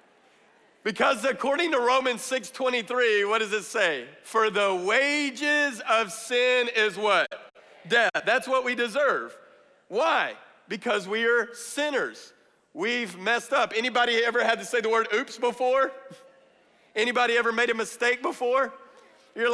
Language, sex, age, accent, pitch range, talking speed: English, male, 40-59, American, 215-270 Hz, 140 wpm